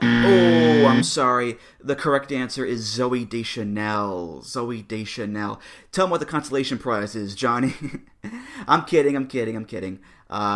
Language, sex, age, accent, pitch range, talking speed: English, male, 30-49, American, 110-135 Hz, 150 wpm